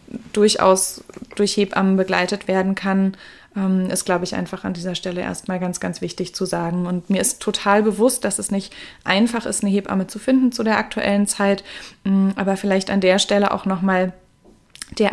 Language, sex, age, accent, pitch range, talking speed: German, female, 20-39, German, 195-215 Hz, 180 wpm